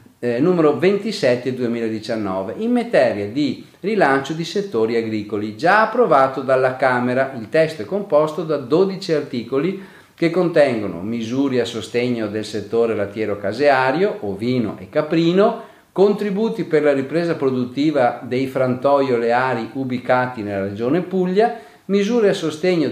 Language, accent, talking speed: Italian, native, 130 wpm